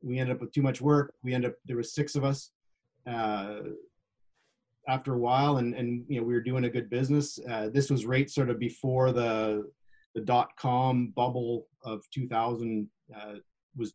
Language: English